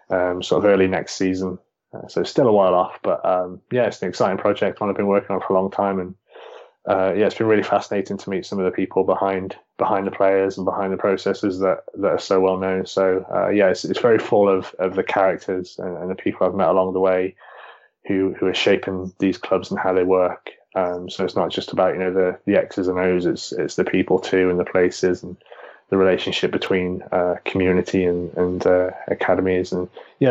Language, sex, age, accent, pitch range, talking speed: English, male, 20-39, British, 90-95 Hz, 235 wpm